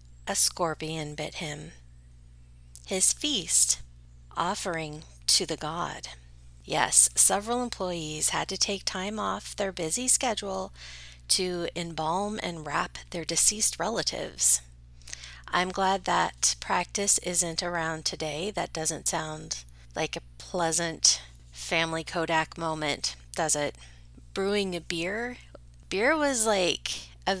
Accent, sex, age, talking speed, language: American, female, 30-49, 115 wpm, English